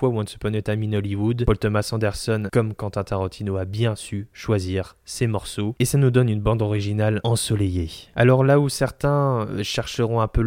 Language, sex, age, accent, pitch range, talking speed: French, male, 20-39, French, 105-125 Hz, 200 wpm